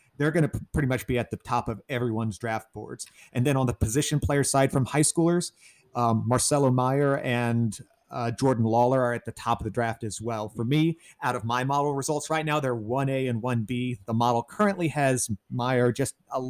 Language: English